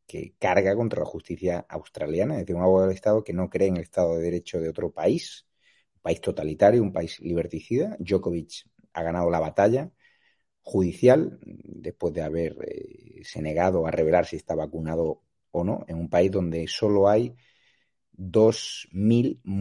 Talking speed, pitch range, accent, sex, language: 170 wpm, 85-100 Hz, Spanish, male, Spanish